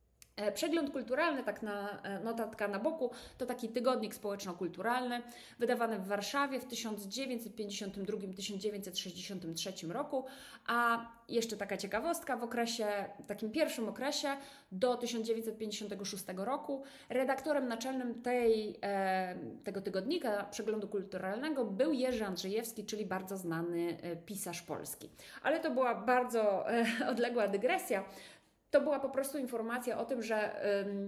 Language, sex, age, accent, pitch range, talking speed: Polish, female, 30-49, native, 195-250 Hz, 115 wpm